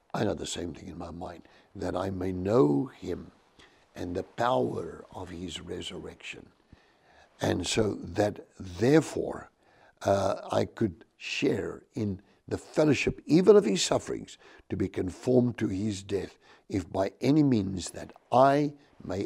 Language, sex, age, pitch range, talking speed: English, male, 60-79, 95-120 Hz, 145 wpm